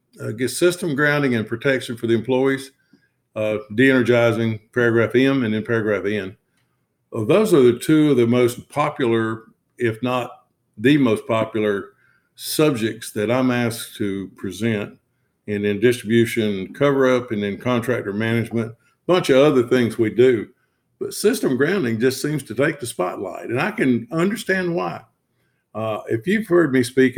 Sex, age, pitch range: male, 50-69, 110-135 Hz